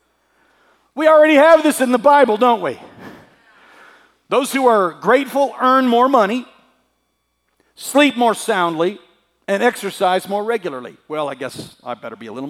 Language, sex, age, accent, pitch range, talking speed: English, male, 50-69, American, 165-245 Hz, 150 wpm